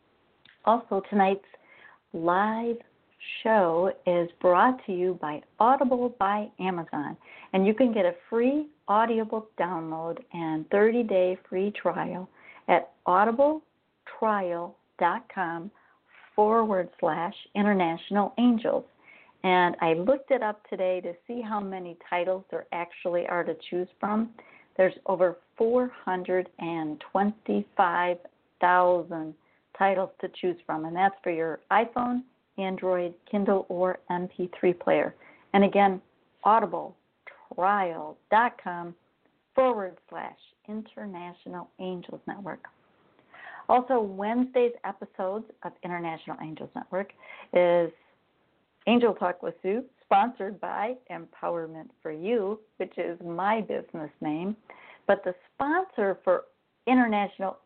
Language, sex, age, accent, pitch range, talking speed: English, female, 50-69, American, 175-220 Hz, 105 wpm